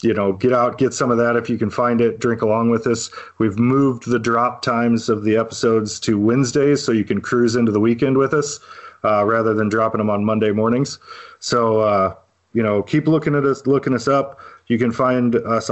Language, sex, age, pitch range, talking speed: English, male, 40-59, 105-125 Hz, 225 wpm